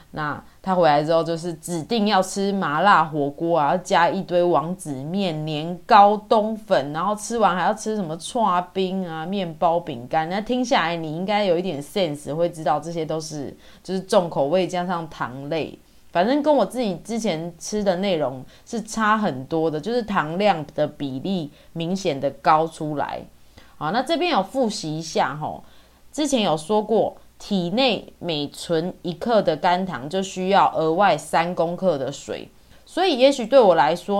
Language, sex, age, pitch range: Chinese, female, 20-39, 160-205 Hz